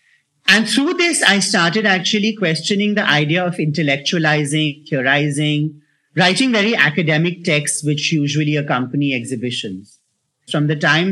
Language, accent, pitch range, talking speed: English, Indian, 145-175 Hz, 125 wpm